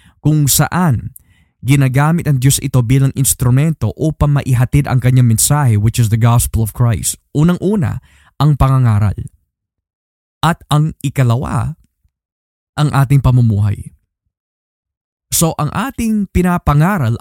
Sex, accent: male, native